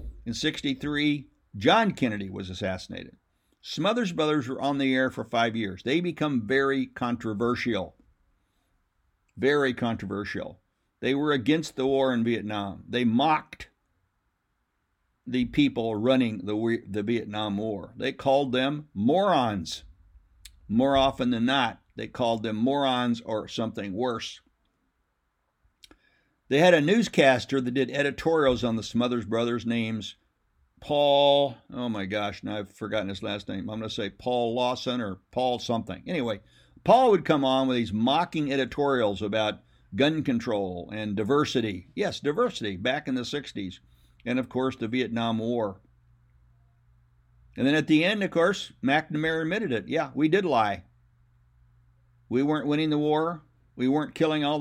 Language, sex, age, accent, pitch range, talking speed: English, male, 60-79, American, 100-140 Hz, 145 wpm